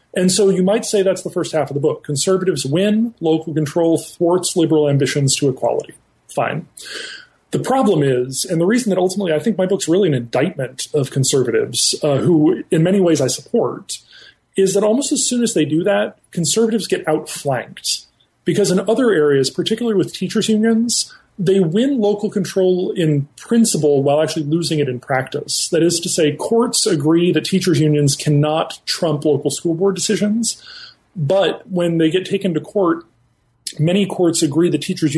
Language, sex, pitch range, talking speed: English, male, 145-195 Hz, 180 wpm